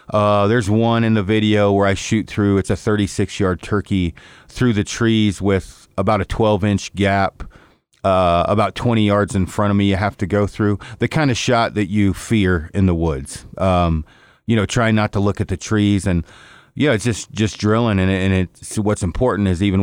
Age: 40-59